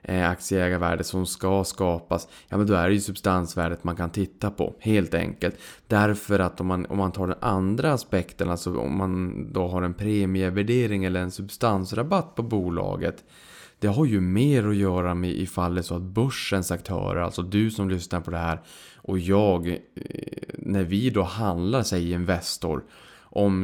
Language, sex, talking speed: Swedish, male, 175 wpm